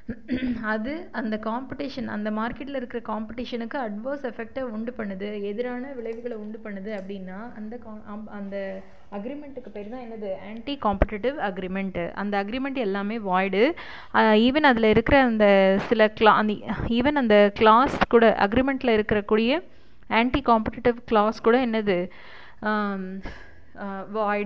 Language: Tamil